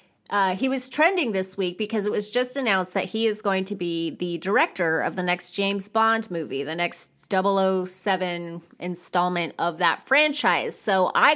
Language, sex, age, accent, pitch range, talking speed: English, female, 30-49, American, 185-250 Hz, 180 wpm